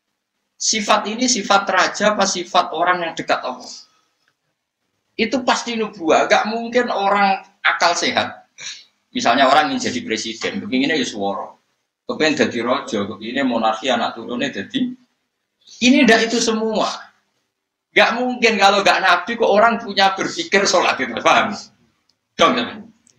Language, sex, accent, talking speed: English, male, Indonesian, 130 wpm